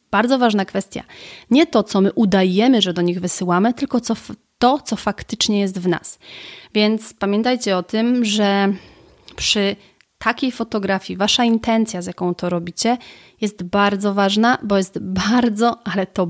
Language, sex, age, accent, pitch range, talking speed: Polish, female, 30-49, native, 185-230 Hz, 150 wpm